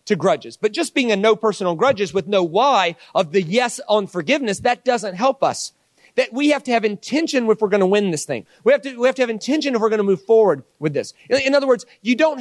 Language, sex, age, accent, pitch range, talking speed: English, male, 40-59, American, 190-250 Hz, 275 wpm